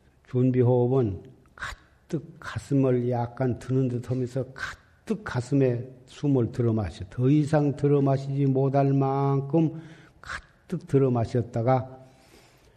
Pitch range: 120-140 Hz